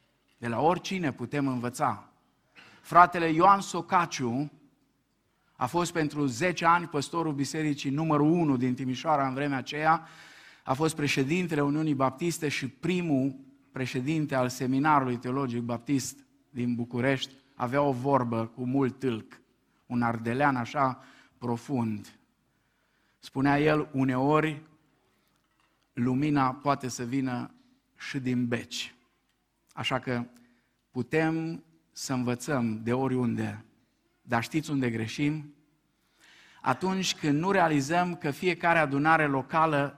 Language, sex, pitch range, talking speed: Romanian, male, 120-150 Hz, 115 wpm